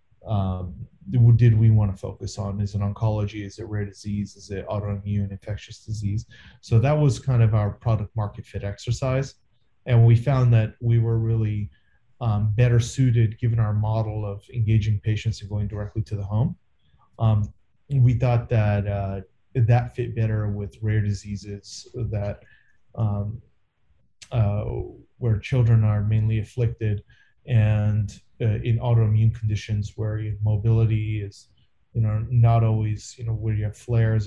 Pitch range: 105-120 Hz